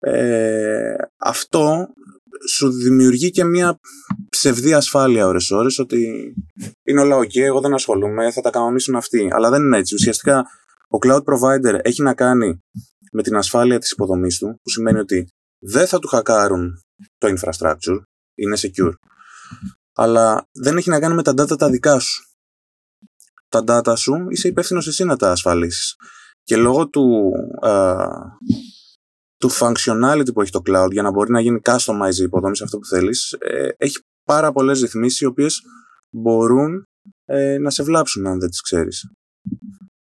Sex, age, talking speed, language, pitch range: male, 20-39, 155 wpm, Greek, 110-150 Hz